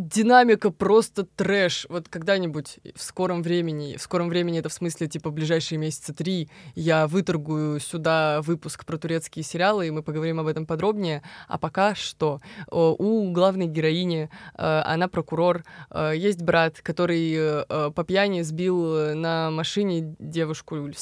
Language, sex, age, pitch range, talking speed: Russian, female, 20-39, 155-185 Hz, 140 wpm